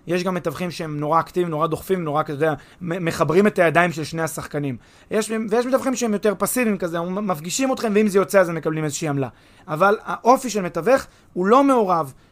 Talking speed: 215 wpm